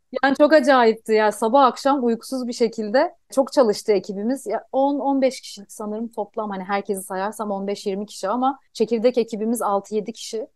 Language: Turkish